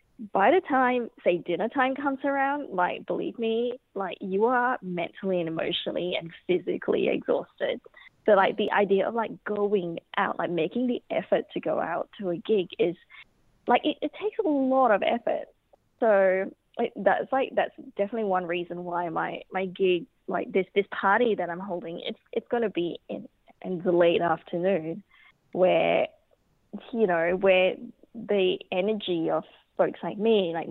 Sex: female